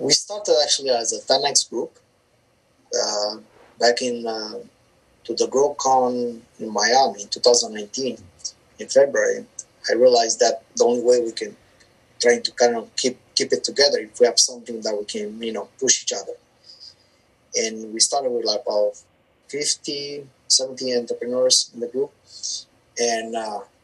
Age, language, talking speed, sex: 20-39, English, 160 wpm, male